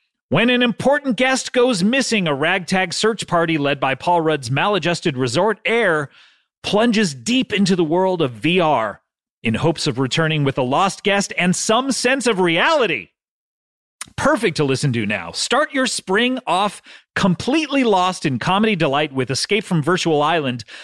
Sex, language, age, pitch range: male, English, 30-49, 150-210 Hz